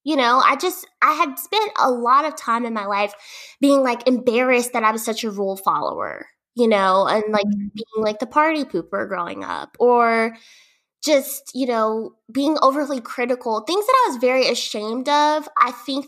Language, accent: English, American